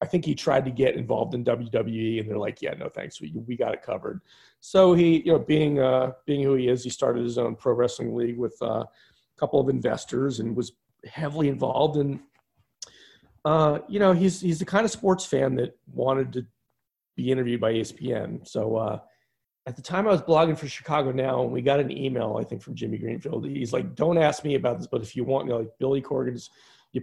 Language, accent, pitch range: English, American, 120-150 Hz